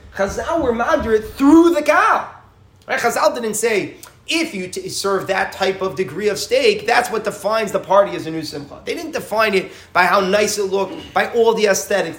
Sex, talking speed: male, 205 wpm